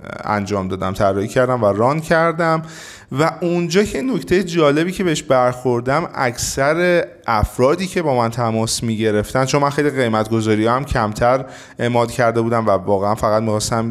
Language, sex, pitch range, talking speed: Persian, male, 110-155 Hz, 155 wpm